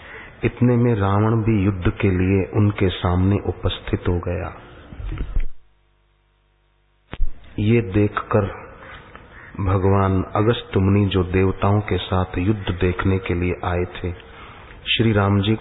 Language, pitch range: Hindi, 90-110 Hz